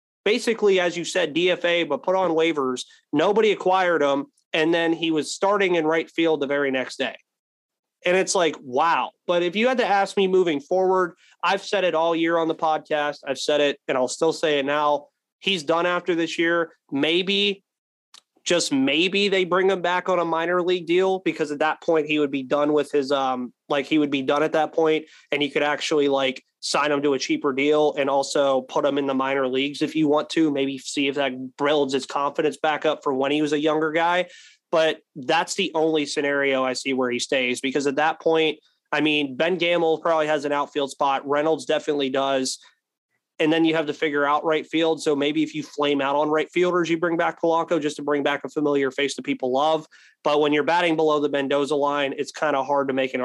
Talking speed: 230 wpm